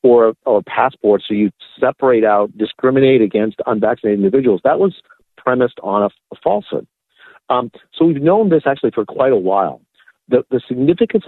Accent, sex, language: American, male, English